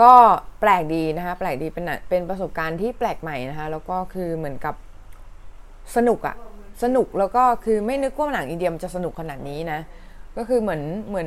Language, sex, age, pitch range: Thai, female, 20-39, 150-195 Hz